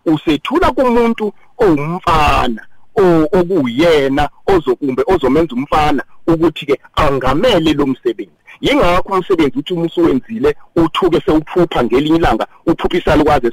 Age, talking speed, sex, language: 50-69, 115 wpm, male, English